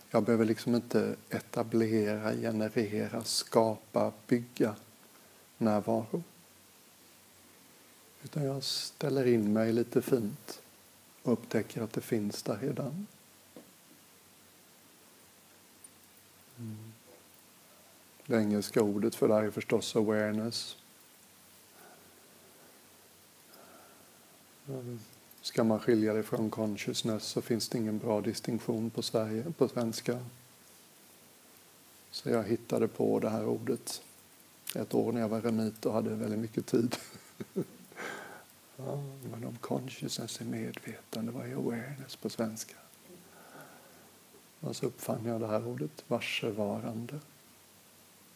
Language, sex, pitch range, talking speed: Swedish, male, 110-120 Hz, 105 wpm